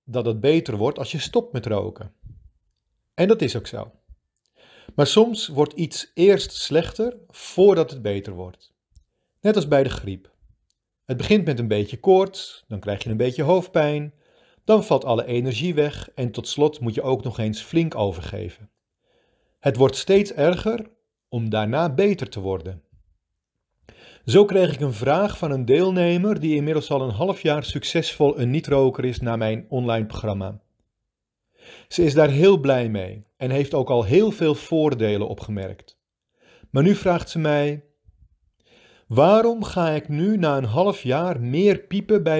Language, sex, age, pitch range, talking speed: Dutch, male, 40-59, 110-170 Hz, 165 wpm